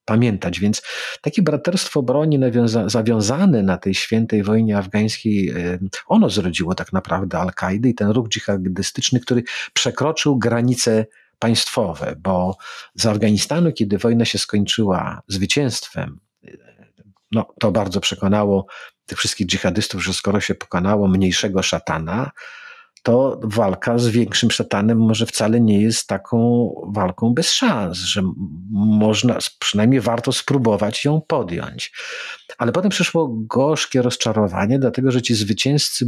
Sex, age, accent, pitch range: male, 50-69, native, 100-120 Hz